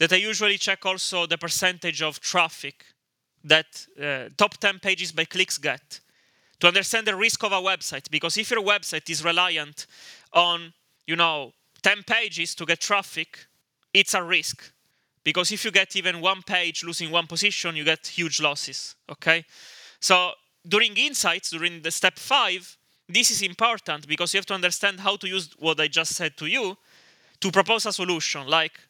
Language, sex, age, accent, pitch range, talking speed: English, male, 20-39, Italian, 160-195 Hz, 175 wpm